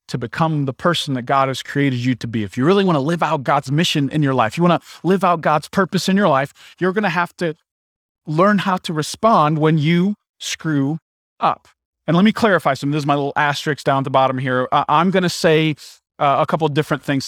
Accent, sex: American, male